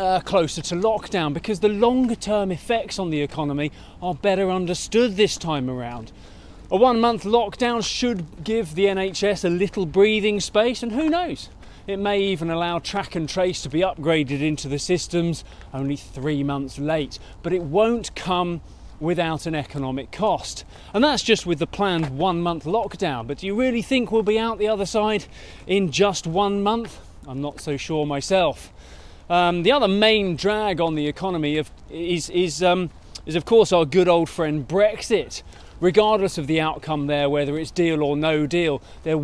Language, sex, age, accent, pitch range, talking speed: English, male, 30-49, British, 150-200 Hz, 175 wpm